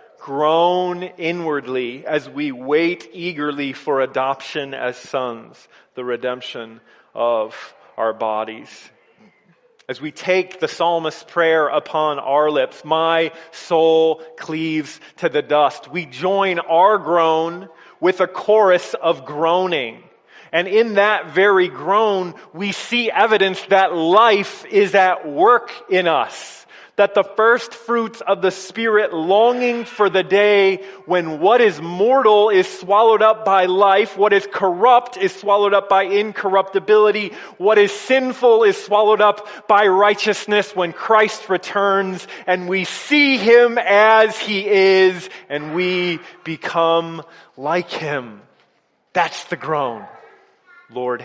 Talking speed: 130 wpm